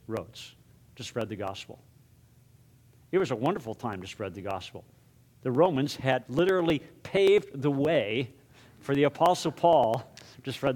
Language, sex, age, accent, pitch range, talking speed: English, male, 50-69, American, 125-150 Hz, 150 wpm